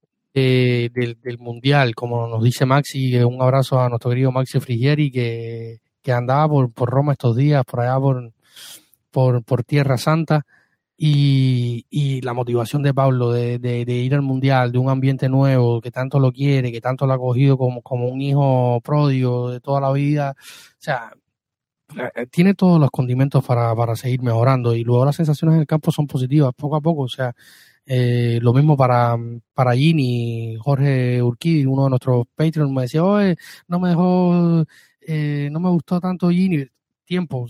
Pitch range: 125-145 Hz